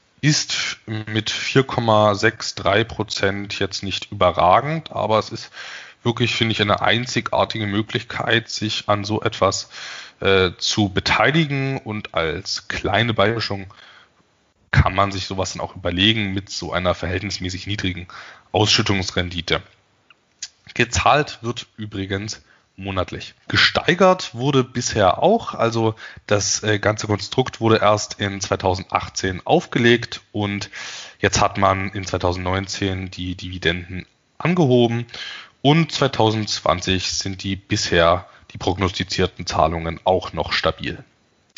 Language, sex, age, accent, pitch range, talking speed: German, male, 20-39, German, 95-120 Hz, 110 wpm